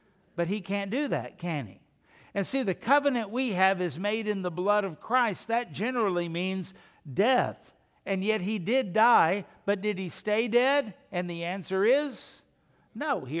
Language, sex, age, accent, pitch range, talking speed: English, male, 60-79, American, 170-210 Hz, 180 wpm